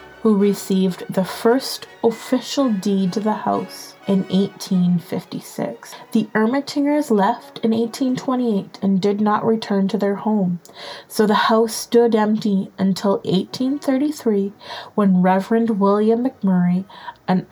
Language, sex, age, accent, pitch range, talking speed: English, female, 20-39, American, 185-230 Hz, 120 wpm